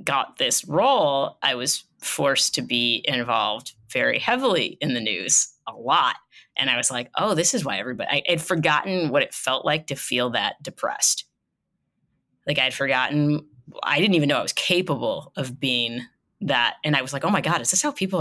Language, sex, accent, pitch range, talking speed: English, female, American, 125-170 Hz, 200 wpm